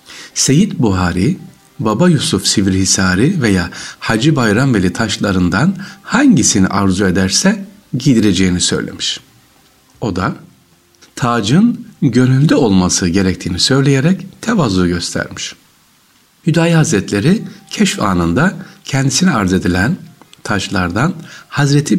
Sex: male